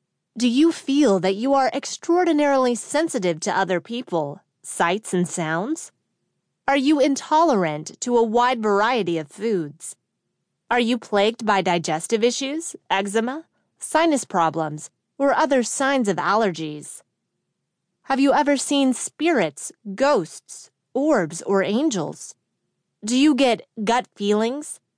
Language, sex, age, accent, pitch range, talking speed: English, female, 30-49, American, 185-275 Hz, 125 wpm